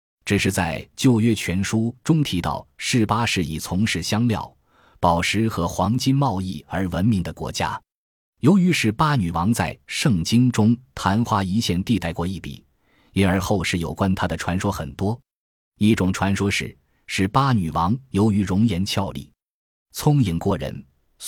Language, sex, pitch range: Chinese, male, 85-110 Hz